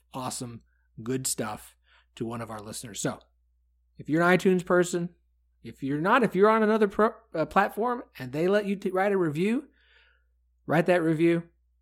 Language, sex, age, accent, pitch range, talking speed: English, male, 30-49, American, 115-160 Hz, 180 wpm